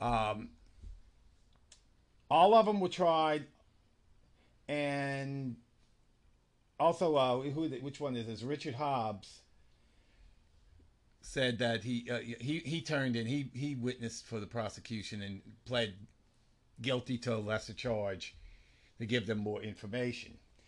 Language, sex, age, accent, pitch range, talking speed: English, male, 50-69, American, 105-130 Hz, 120 wpm